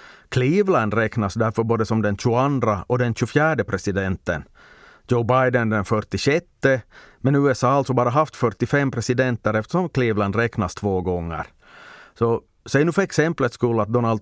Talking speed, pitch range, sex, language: 150 wpm, 105-125 Hz, male, Swedish